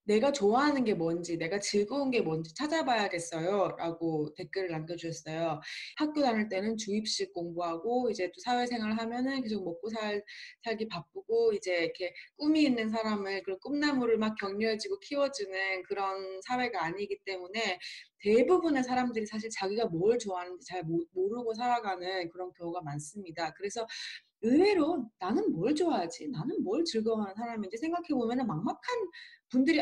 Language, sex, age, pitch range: Korean, female, 20-39, 185-300 Hz